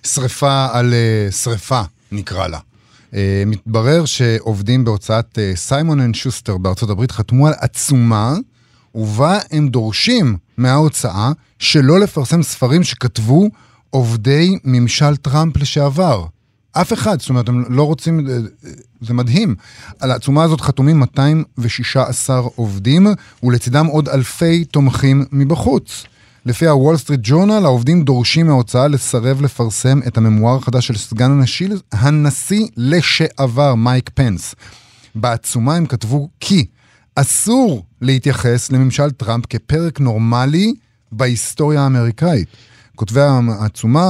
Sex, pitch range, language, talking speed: male, 115-145 Hz, Hebrew, 110 wpm